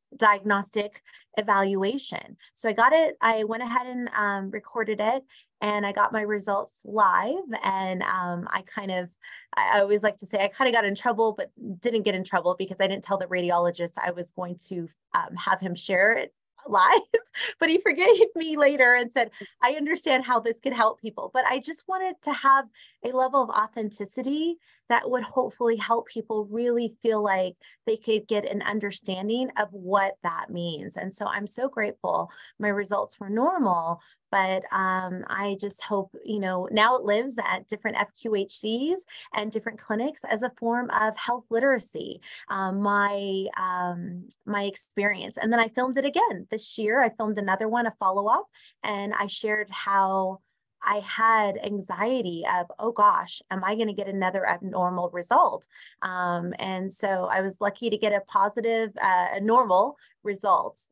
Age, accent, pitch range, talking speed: 20-39, American, 195-245 Hz, 175 wpm